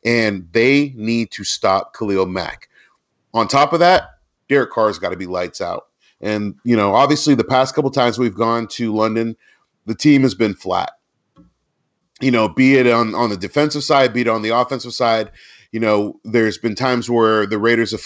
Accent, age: American, 30-49